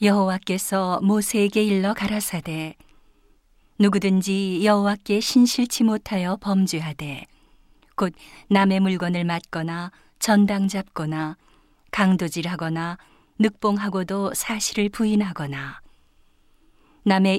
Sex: female